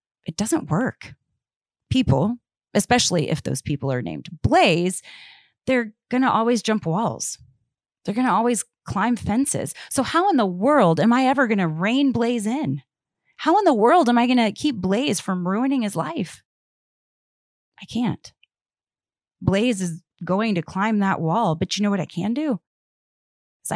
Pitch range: 170-220 Hz